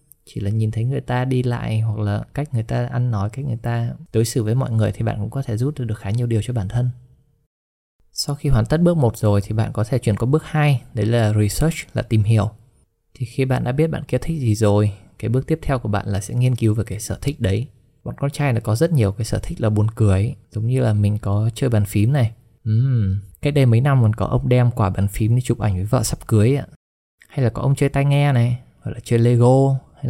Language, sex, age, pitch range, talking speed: Vietnamese, male, 20-39, 110-130 Hz, 275 wpm